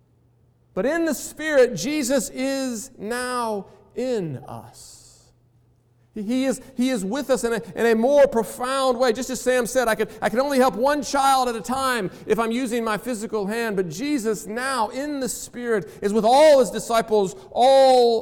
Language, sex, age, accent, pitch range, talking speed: English, male, 40-59, American, 195-255 Hz, 185 wpm